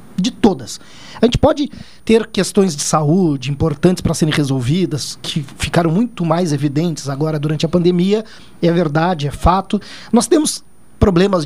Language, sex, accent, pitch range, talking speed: Portuguese, male, Brazilian, 165-220 Hz, 150 wpm